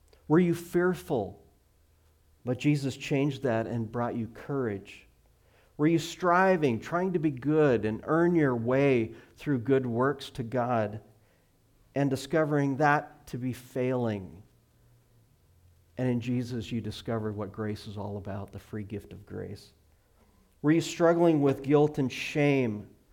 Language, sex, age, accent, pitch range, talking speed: English, male, 50-69, American, 100-135 Hz, 145 wpm